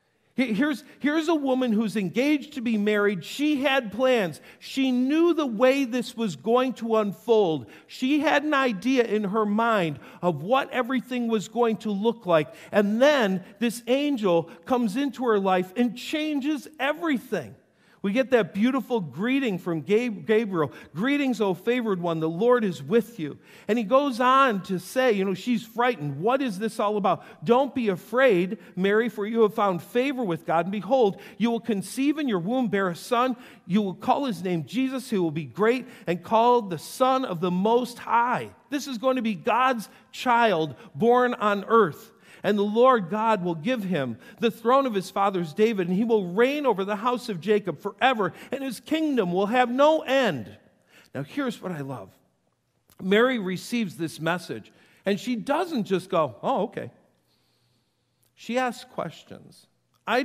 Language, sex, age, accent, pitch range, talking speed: English, male, 50-69, American, 185-250 Hz, 175 wpm